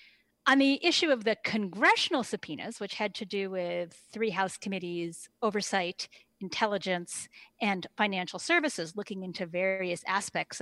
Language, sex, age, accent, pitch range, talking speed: English, female, 40-59, American, 190-255 Hz, 135 wpm